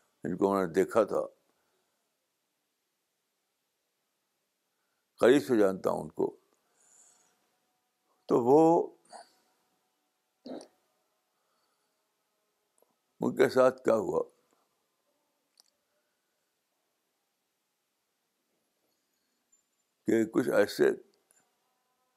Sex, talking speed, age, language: male, 40 wpm, 60-79, Urdu